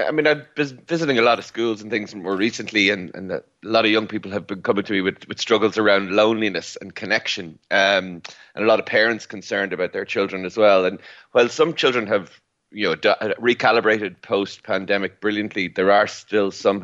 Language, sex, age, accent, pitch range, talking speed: English, male, 30-49, Irish, 95-115 Hz, 205 wpm